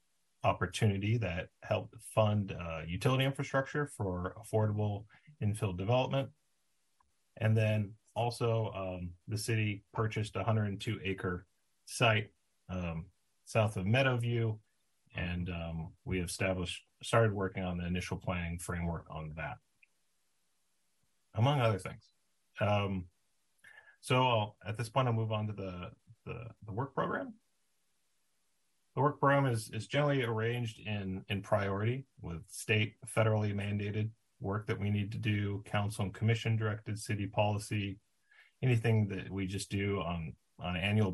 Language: English